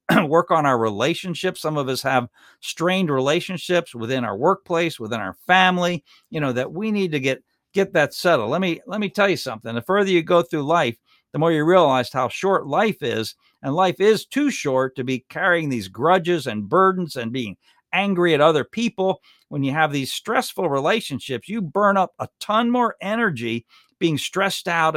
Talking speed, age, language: 195 wpm, 50-69, English